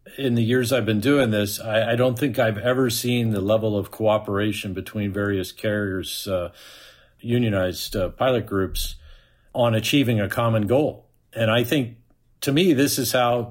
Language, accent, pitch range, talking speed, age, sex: English, American, 105-120 Hz, 175 wpm, 50-69, male